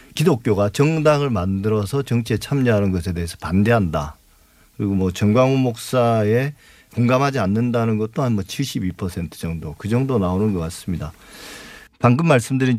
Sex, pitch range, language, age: male, 100-135 Hz, Korean, 40-59